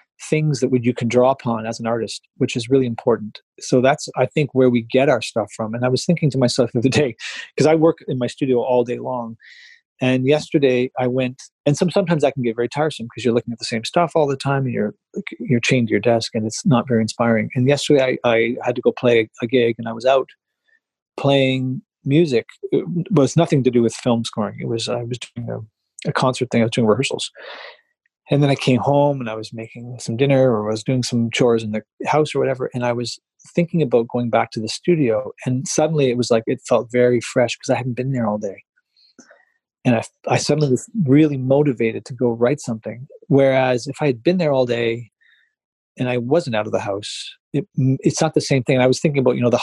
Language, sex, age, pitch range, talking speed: English, male, 30-49, 115-140 Hz, 240 wpm